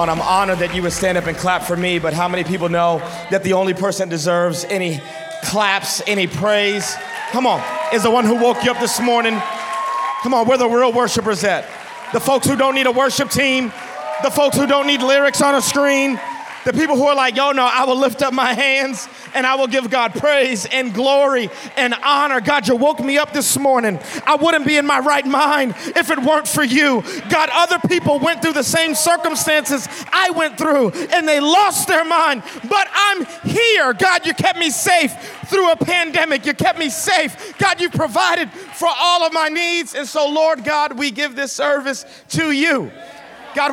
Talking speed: 210 wpm